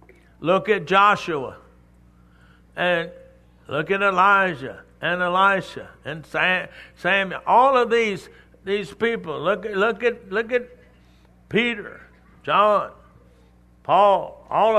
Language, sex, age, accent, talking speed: English, male, 60-79, American, 110 wpm